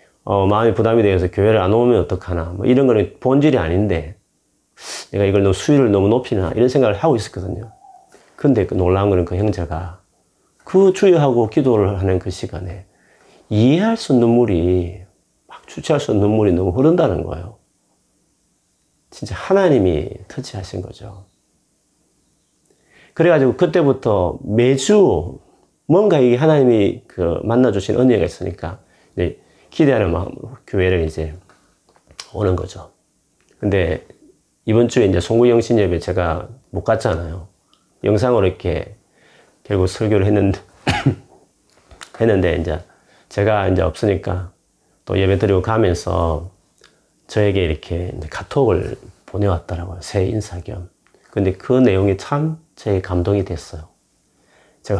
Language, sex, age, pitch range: Korean, male, 40-59, 90-120 Hz